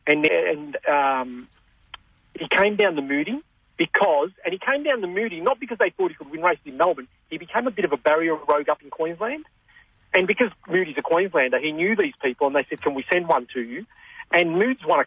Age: 40-59